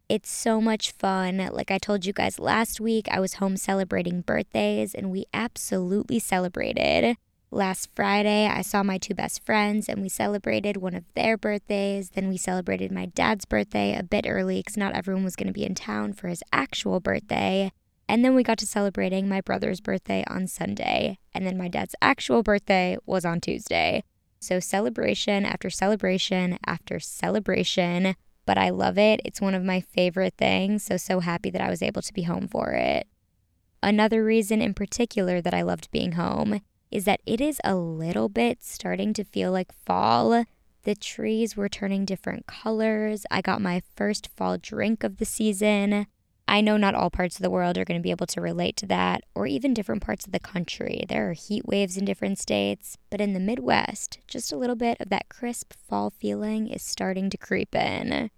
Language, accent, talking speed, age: English, American, 195 wpm, 20-39